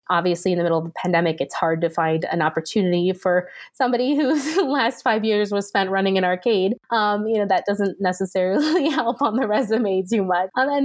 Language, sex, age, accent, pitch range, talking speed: English, female, 20-39, American, 170-215 Hz, 210 wpm